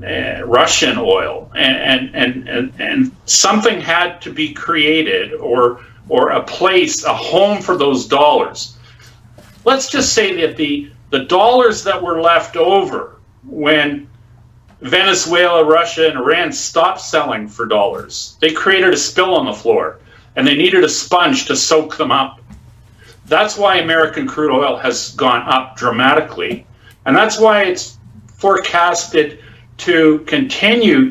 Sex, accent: male, American